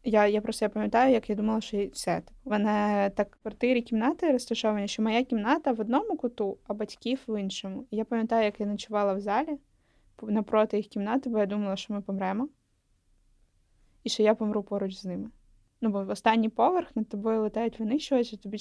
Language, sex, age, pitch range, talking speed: Ukrainian, female, 20-39, 205-245 Hz, 190 wpm